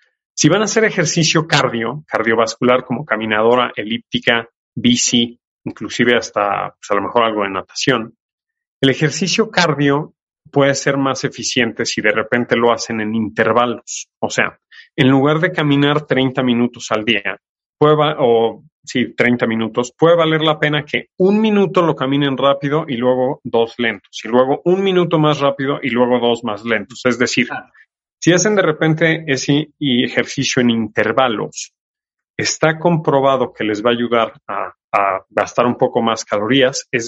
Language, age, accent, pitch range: Spanish, 30-49, Mexican, 120-155 Hz